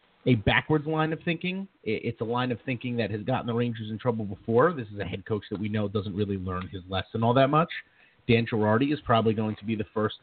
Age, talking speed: 30-49, 250 wpm